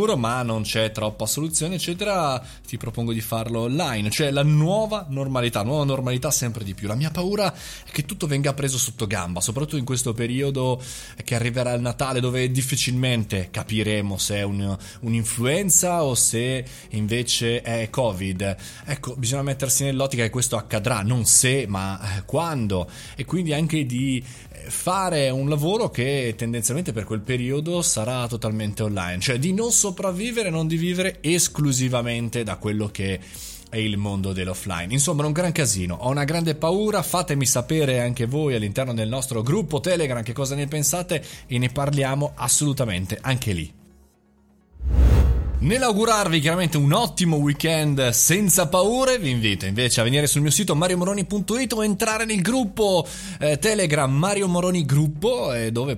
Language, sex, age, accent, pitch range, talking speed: Italian, male, 20-39, native, 110-155 Hz, 155 wpm